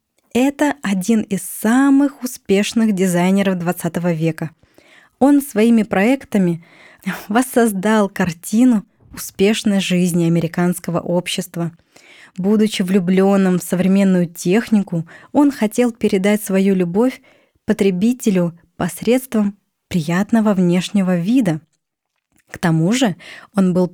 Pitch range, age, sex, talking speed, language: 175-215 Hz, 20-39, female, 95 wpm, Russian